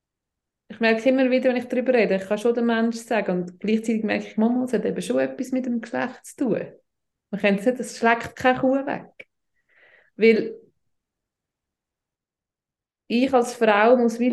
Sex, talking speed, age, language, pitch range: female, 180 wpm, 20-39, German, 195-245 Hz